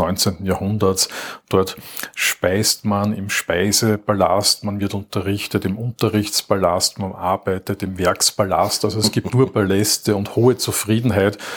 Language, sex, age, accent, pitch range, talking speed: German, male, 50-69, Austrian, 100-110 Hz, 125 wpm